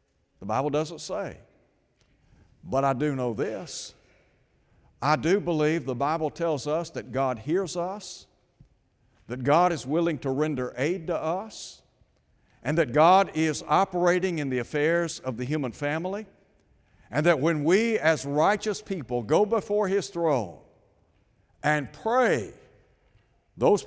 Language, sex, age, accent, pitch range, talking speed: English, male, 60-79, American, 140-185 Hz, 140 wpm